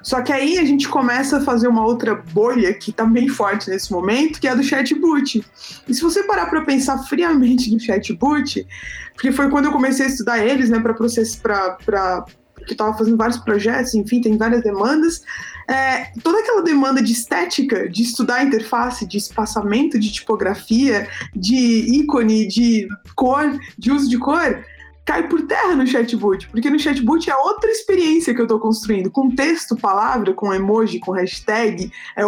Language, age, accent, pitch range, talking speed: Portuguese, 20-39, Brazilian, 225-285 Hz, 180 wpm